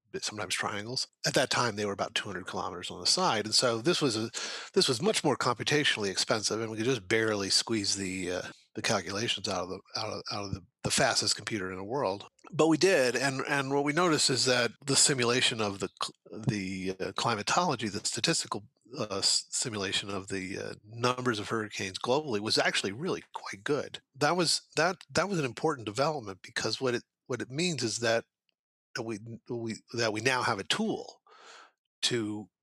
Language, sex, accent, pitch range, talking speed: English, male, American, 100-135 Hz, 195 wpm